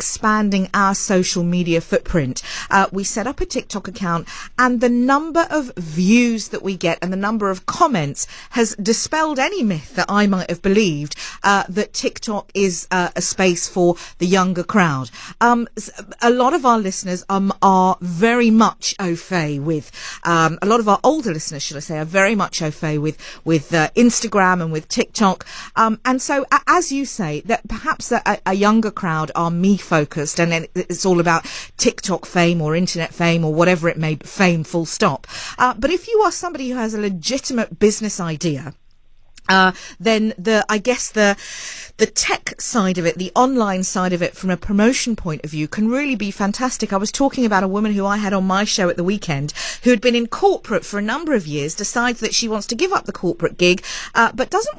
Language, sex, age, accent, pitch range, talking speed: English, female, 40-59, British, 175-240 Hz, 205 wpm